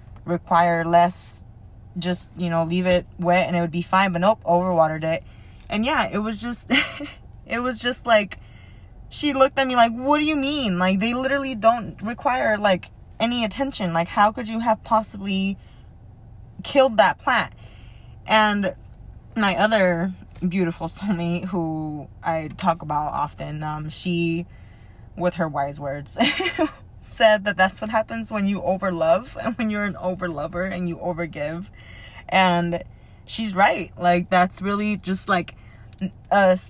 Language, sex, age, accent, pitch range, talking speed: English, female, 20-39, American, 165-215 Hz, 150 wpm